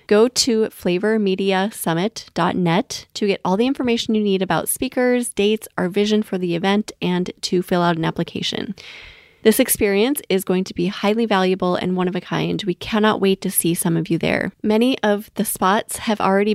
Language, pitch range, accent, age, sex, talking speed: English, 190-230 Hz, American, 20-39, female, 190 wpm